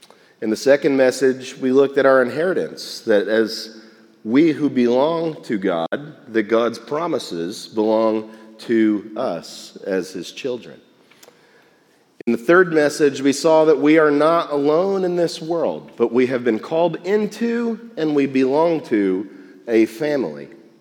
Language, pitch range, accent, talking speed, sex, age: English, 115-160 Hz, American, 145 wpm, male, 40-59